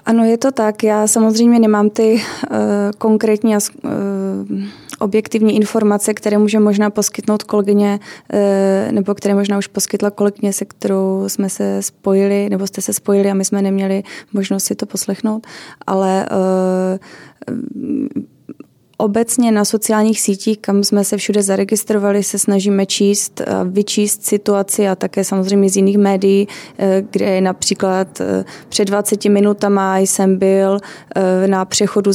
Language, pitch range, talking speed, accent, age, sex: Czech, 190-205 Hz, 130 wpm, native, 20-39, female